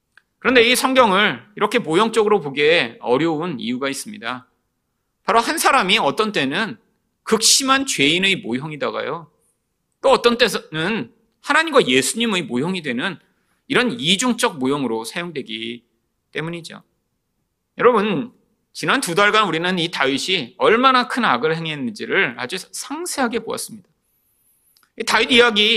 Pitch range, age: 160-245 Hz, 30-49